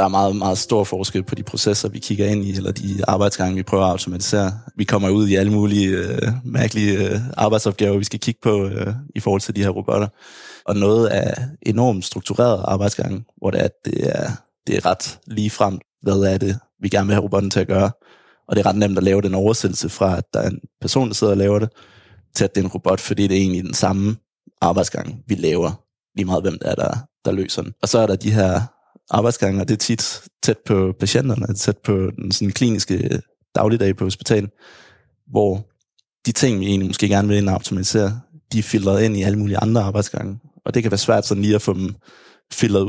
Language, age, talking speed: Danish, 20-39, 225 wpm